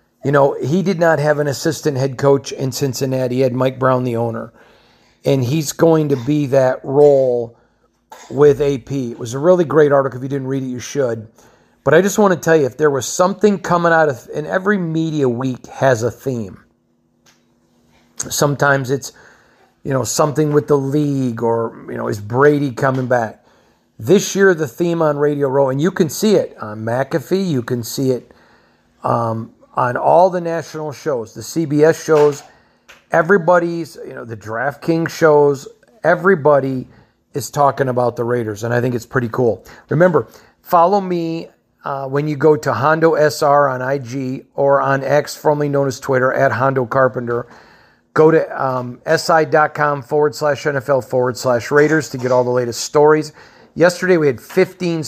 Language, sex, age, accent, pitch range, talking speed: English, male, 40-59, American, 125-155 Hz, 175 wpm